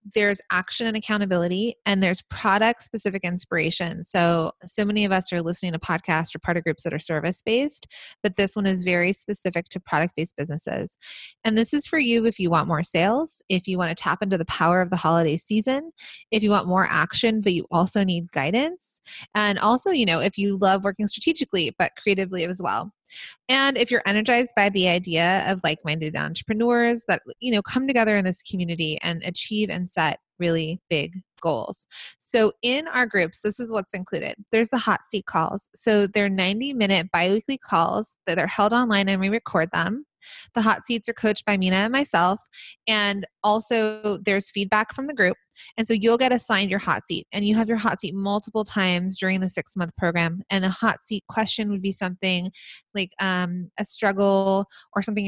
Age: 20-39